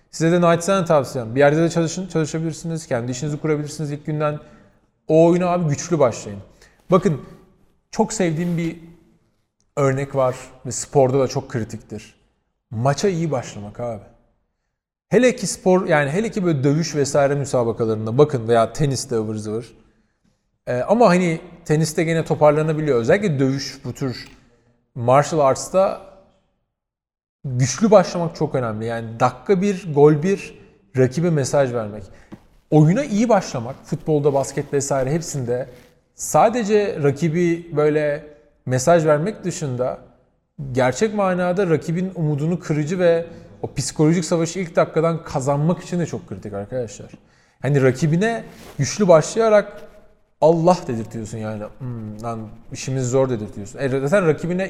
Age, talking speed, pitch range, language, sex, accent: 40-59, 125 wpm, 125-170 Hz, Turkish, male, native